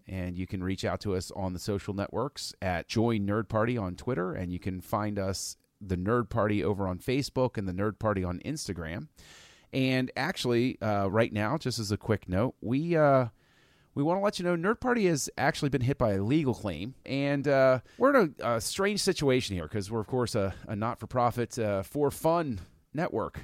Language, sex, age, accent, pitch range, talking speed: English, male, 30-49, American, 105-130 Hz, 215 wpm